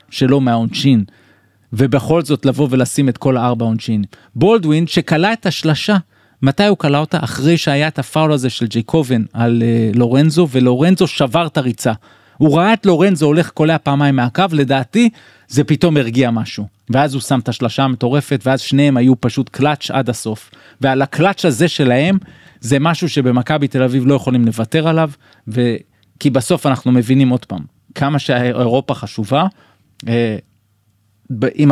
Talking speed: 110 wpm